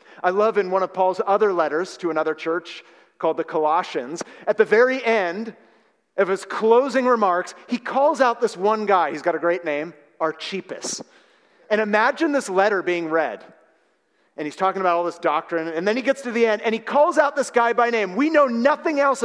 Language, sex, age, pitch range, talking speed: English, male, 40-59, 180-275 Hz, 205 wpm